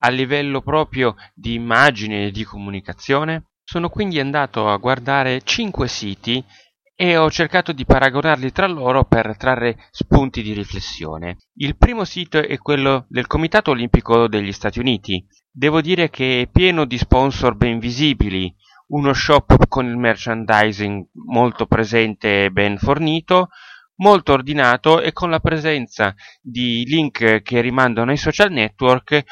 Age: 30-49